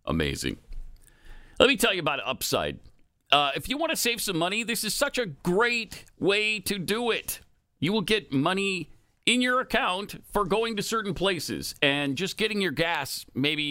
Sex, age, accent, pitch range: male, 50-69, American, 120-175 Hz